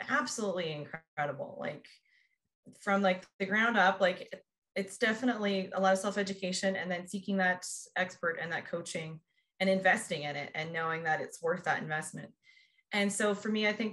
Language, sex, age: English, female, 20-39